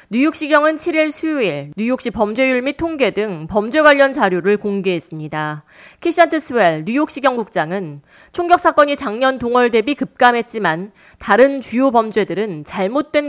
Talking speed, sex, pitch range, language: 115 wpm, female, 185-280 Hz, English